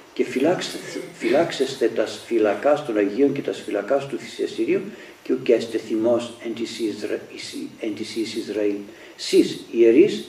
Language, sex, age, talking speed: Greek, male, 60-79, 135 wpm